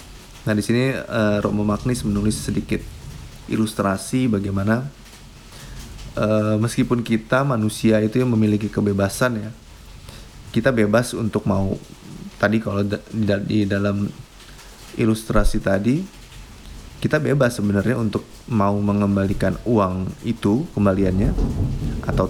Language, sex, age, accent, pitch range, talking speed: Indonesian, male, 20-39, native, 100-115 Hz, 110 wpm